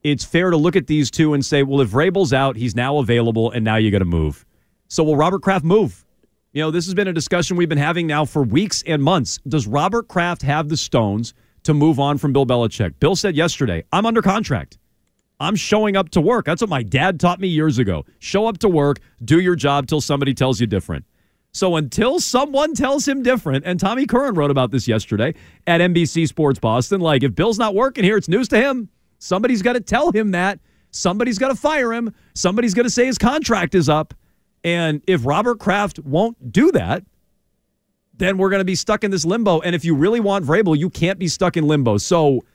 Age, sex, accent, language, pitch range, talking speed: 40-59, male, American, English, 140-205 Hz, 225 wpm